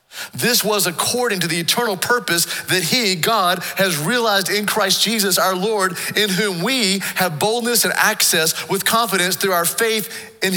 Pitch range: 150-210 Hz